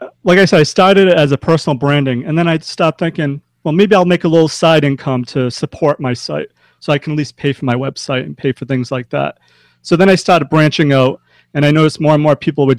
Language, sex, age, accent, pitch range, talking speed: English, male, 30-49, American, 135-165 Hz, 260 wpm